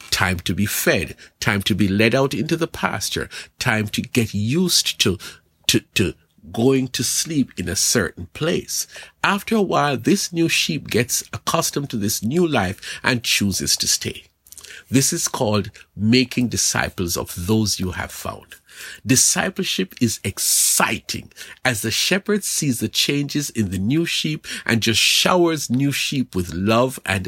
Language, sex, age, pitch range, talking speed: English, male, 50-69, 105-145 Hz, 160 wpm